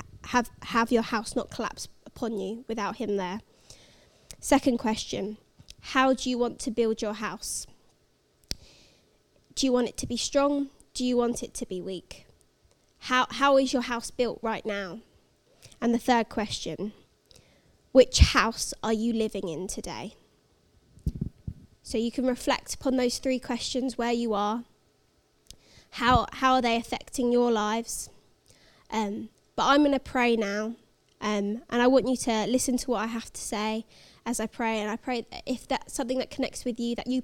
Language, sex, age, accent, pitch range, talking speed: English, female, 20-39, British, 220-255 Hz, 175 wpm